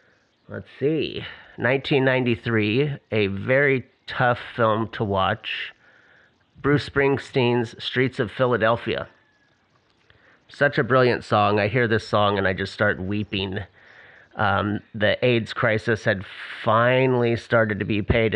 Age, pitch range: 40-59, 105-125 Hz